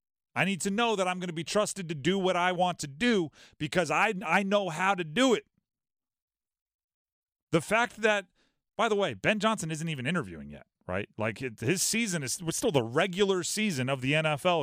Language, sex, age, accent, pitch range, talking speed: English, male, 40-59, American, 140-205 Hz, 205 wpm